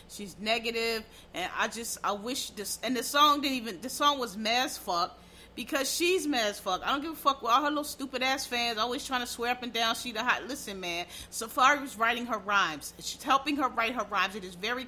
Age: 30-49